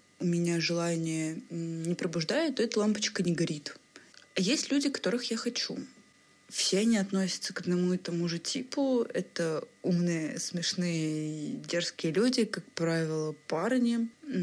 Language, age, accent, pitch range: Russian, 20-39, native, 165-195 Hz